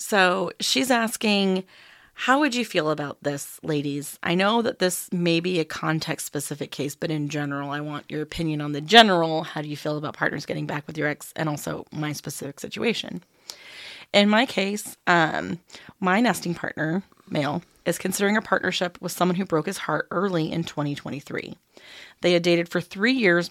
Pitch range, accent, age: 150-190 Hz, American, 30-49